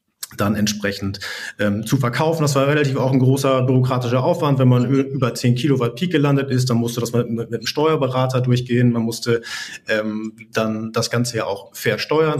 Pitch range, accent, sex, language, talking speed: 115-145 Hz, German, male, German, 180 wpm